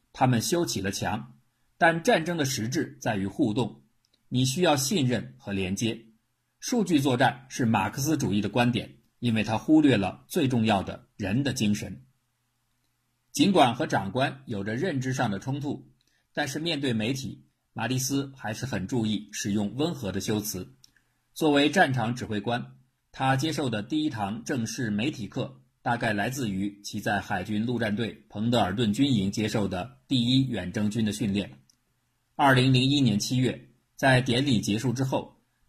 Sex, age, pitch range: male, 50-69, 105-135 Hz